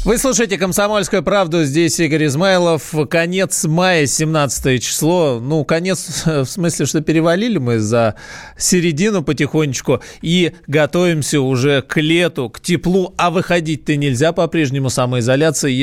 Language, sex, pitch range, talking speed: Russian, male, 125-165 Hz, 125 wpm